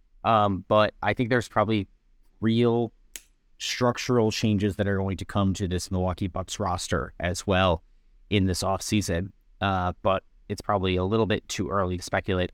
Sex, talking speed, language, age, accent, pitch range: male, 165 wpm, English, 30-49, American, 95-115 Hz